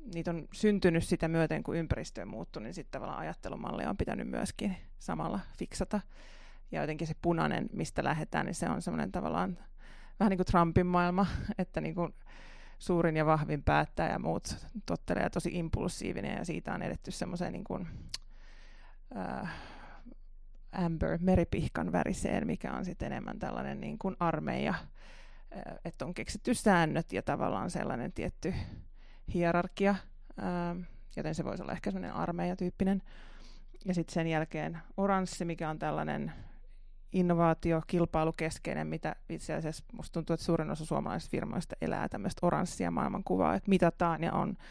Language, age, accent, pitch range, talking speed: Finnish, 20-39, native, 165-185 Hz, 140 wpm